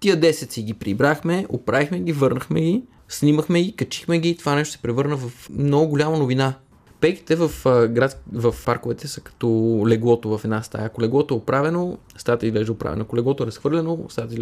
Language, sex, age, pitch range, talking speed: Bulgarian, male, 20-39, 115-145 Hz, 180 wpm